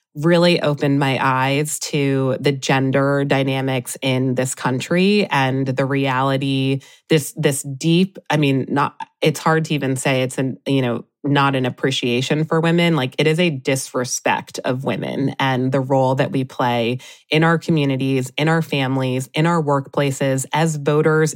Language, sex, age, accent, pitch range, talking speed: English, female, 20-39, American, 135-155 Hz, 165 wpm